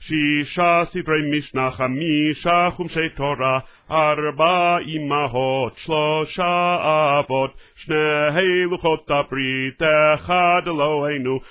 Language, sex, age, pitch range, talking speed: Russian, male, 40-59, 140-175 Hz, 85 wpm